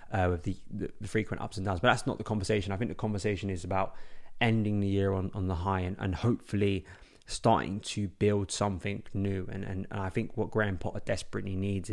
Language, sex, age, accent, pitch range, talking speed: English, male, 20-39, British, 95-105 Hz, 220 wpm